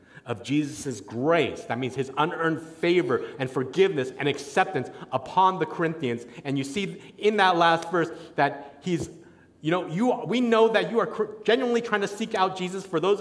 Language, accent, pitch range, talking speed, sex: English, American, 125-180 Hz, 185 wpm, male